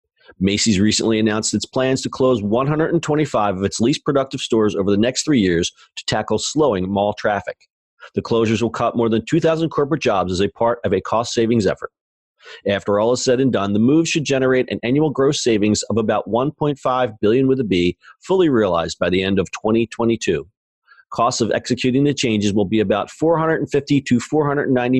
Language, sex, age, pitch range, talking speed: English, male, 40-59, 105-135 Hz, 185 wpm